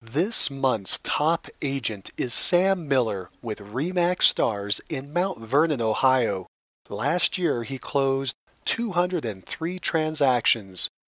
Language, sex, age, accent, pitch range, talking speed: English, male, 40-59, American, 120-175 Hz, 110 wpm